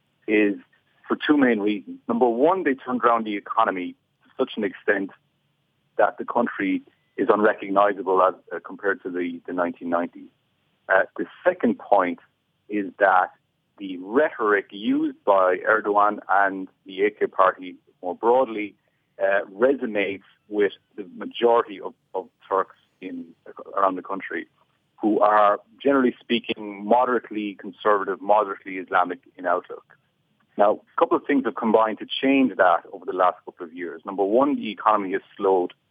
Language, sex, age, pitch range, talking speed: English, male, 40-59, 95-135 Hz, 150 wpm